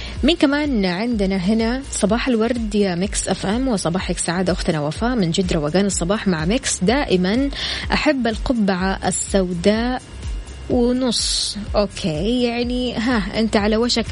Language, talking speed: Arabic, 125 wpm